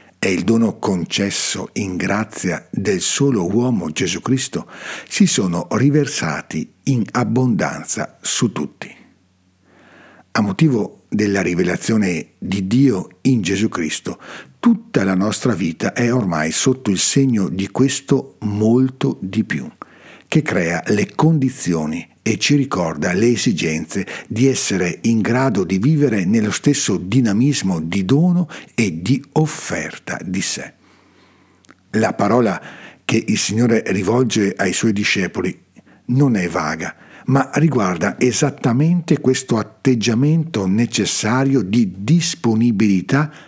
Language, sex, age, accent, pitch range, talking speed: Italian, male, 60-79, native, 100-135 Hz, 120 wpm